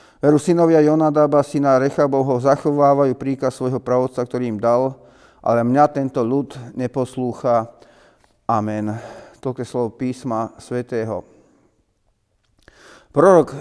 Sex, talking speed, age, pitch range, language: male, 100 wpm, 40-59, 125-145 Hz, Slovak